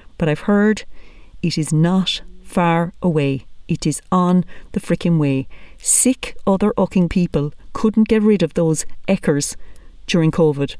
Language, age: English, 40-59